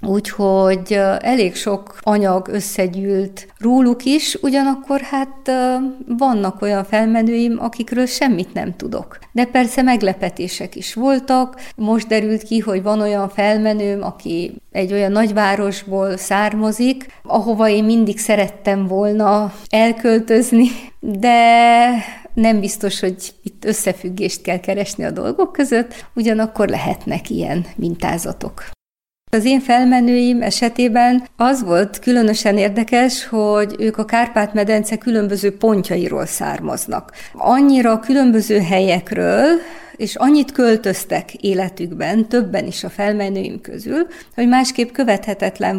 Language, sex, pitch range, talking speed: Hungarian, female, 200-240 Hz, 110 wpm